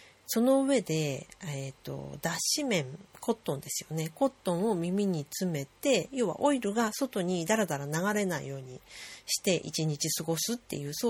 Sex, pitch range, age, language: female, 155-235 Hz, 40-59, Japanese